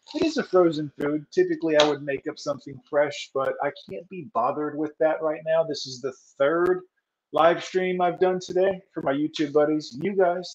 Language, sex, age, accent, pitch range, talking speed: English, male, 30-49, American, 145-185 Hz, 205 wpm